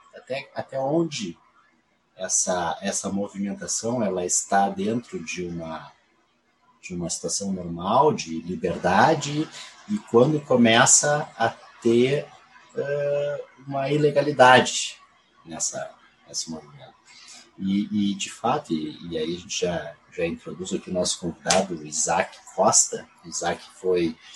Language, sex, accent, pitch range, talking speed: Portuguese, male, Brazilian, 90-130 Hz, 125 wpm